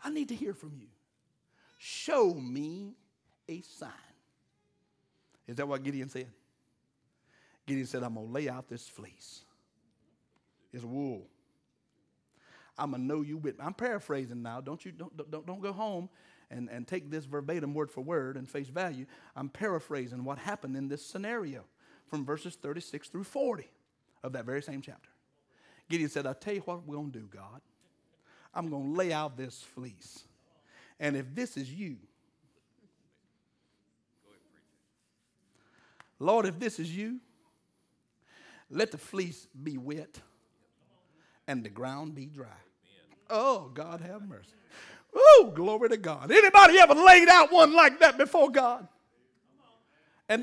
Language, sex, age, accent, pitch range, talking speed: English, male, 60-79, American, 135-215 Hz, 150 wpm